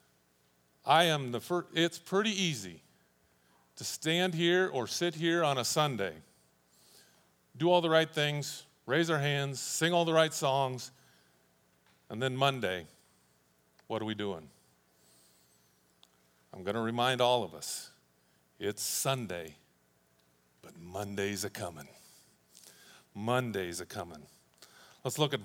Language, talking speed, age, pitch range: English, 130 wpm, 50-69, 100-170 Hz